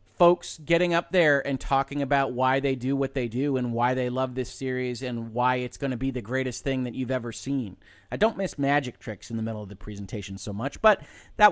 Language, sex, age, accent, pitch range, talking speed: English, male, 30-49, American, 115-145 Hz, 245 wpm